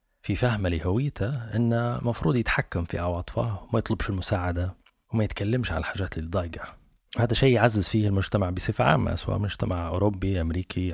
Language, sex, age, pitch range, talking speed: Arabic, male, 30-49, 90-115 Hz, 155 wpm